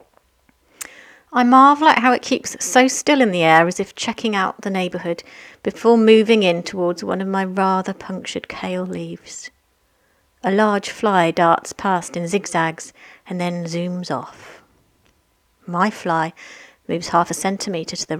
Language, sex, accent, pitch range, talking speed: English, female, British, 175-220 Hz, 155 wpm